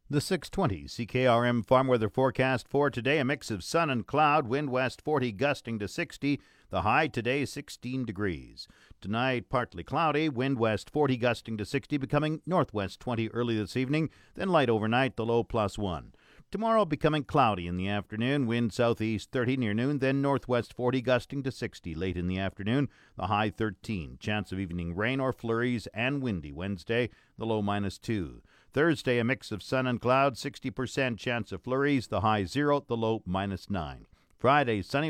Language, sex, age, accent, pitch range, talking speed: English, male, 50-69, American, 105-135 Hz, 180 wpm